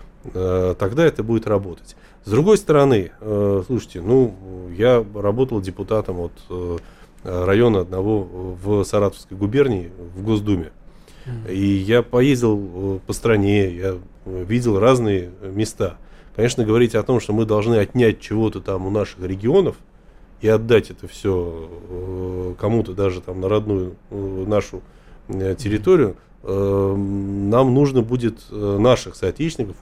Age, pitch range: 20-39, 95-115 Hz